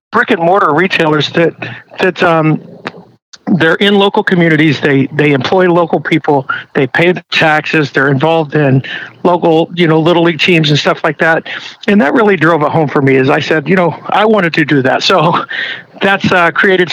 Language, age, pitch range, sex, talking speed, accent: English, 50-69, 150-180 Hz, male, 185 wpm, American